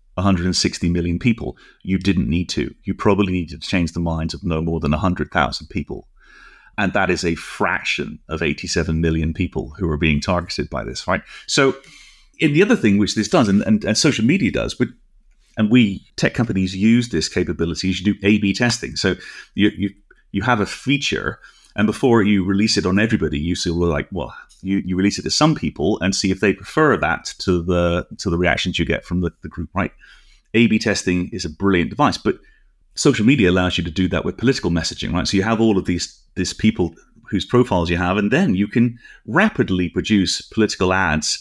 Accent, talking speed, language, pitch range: British, 215 wpm, English, 85-110 Hz